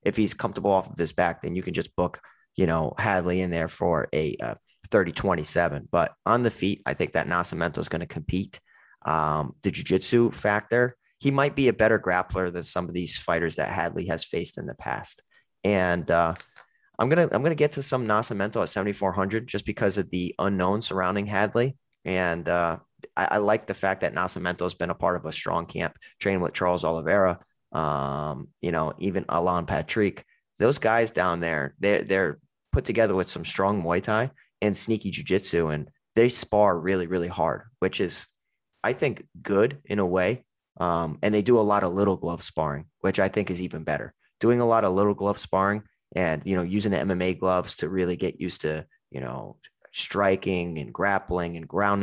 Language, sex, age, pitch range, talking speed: English, male, 20-39, 85-105 Hz, 200 wpm